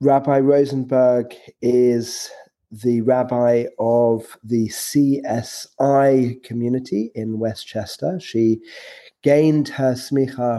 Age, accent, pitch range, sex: 30-49, British, 115-135 Hz, male